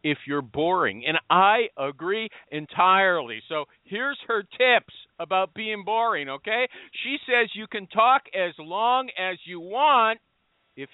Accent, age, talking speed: American, 50-69, 145 wpm